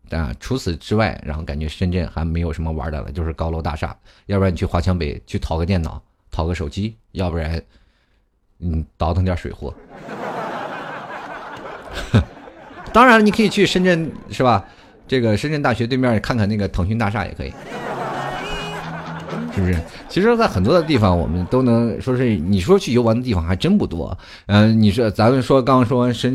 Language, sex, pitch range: Chinese, male, 90-115 Hz